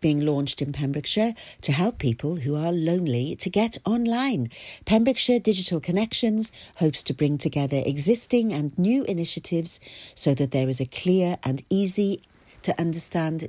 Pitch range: 145-200 Hz